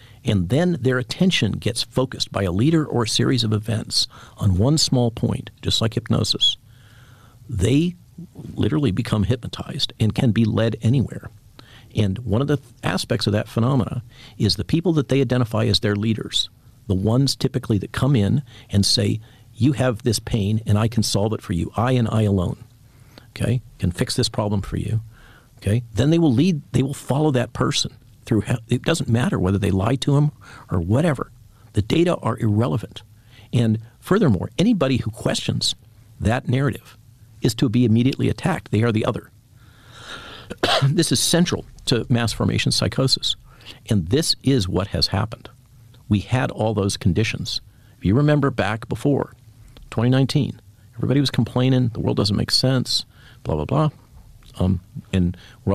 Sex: male